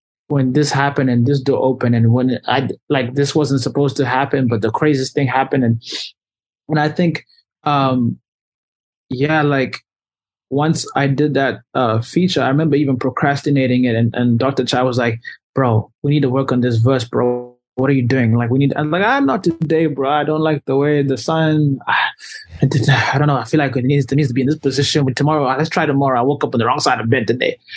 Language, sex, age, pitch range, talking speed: English, male, 20-39, 125-150 Hz, 225 wpm